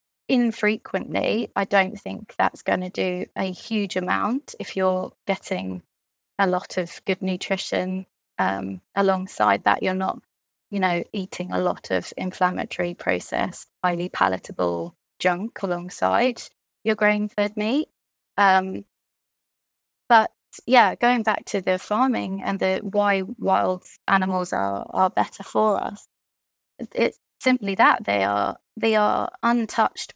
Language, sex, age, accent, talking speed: English, female, 20-39, British, 130 wpm